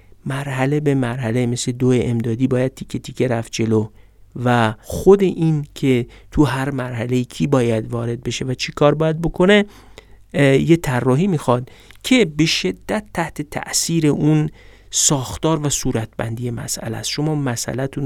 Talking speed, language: 140 wpm, Persian